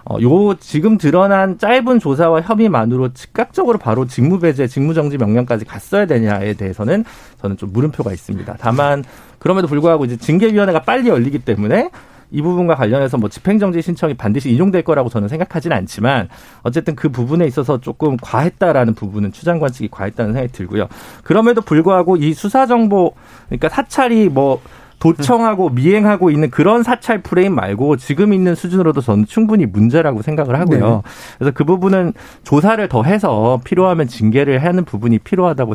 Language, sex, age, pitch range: Korean, male, 40-59, 115-185 Hz